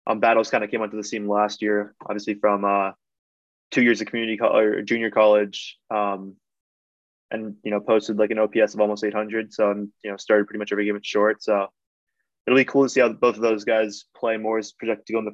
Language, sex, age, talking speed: English, male, 20-39, 235 wpm